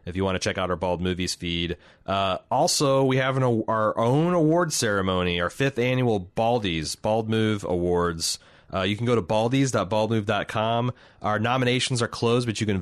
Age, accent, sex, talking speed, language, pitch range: 30-49, American, male, 185 wpm, English, 95-115 Hz